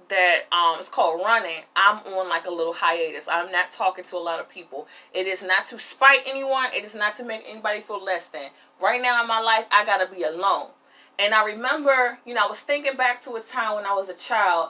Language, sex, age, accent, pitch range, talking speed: English, female, 30-49, American, 195-250 Hz, 245 wpm